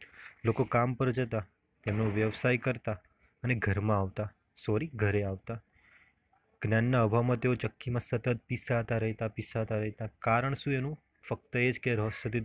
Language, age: Gujarati, 30-49